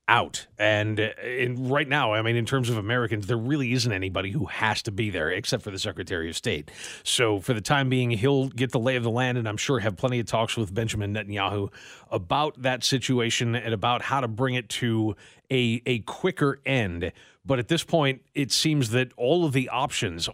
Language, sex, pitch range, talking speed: English, male, 110-135 Hz, 215 wpm